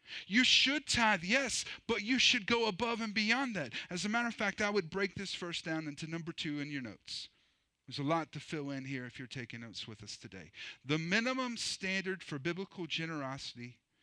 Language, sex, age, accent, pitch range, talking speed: English, male, 40-59, American, 150-235 Hz, 210 wpm